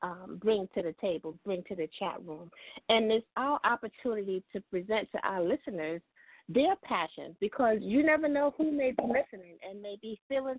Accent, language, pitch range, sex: American, English, 205-290 Hz, female